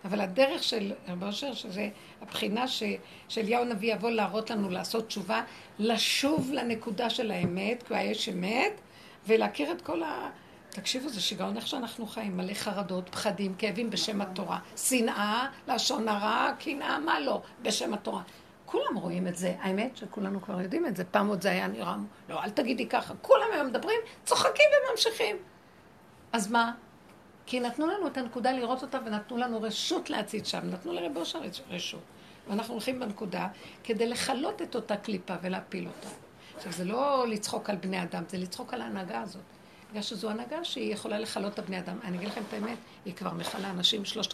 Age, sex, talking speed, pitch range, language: 60-79, female, 175 wpm, 205-270 Hz, Hebrew